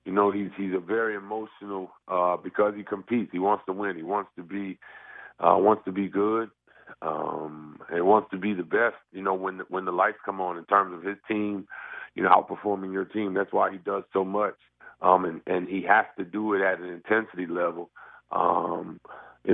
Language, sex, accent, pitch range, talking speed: English, male, American, 90-105 Hz, 215 wpm